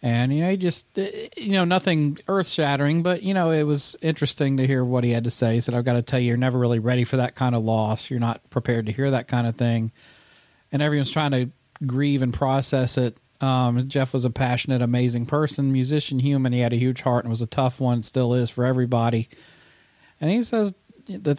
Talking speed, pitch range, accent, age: 235 wpm, 120-140 Hz, American, 40-59